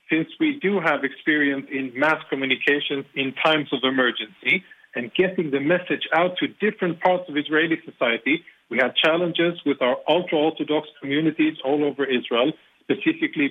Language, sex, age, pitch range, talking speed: English, male, 40-59, 135-165 Hz, 150 wpm